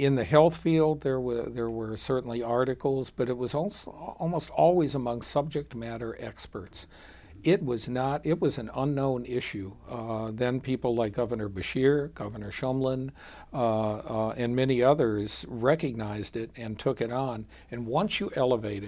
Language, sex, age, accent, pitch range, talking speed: English, male, 60-79, American, 110-130 Hz, 160 wpm